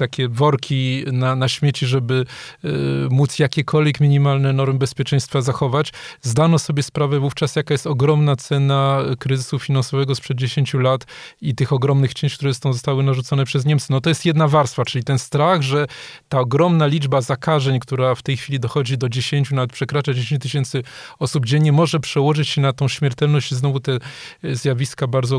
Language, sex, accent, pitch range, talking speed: Polish, male, native, 135-150 Hz, 170 wpm